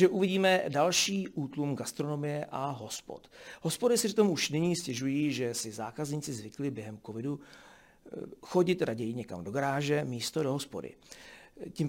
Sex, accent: male, native